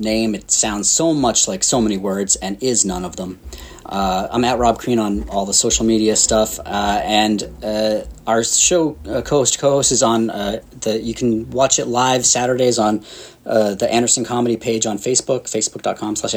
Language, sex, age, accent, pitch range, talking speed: English, male, 30-49, American, 110-130 Hz, 195 wpm